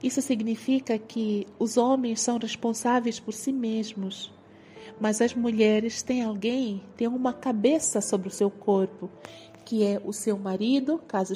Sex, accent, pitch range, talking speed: female, Brazilian, 200-240 Hz, 150 wpm